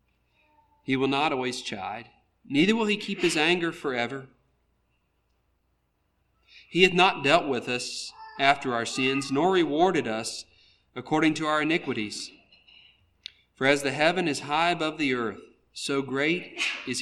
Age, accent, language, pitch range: 40-59, American, English, 115-170 Hz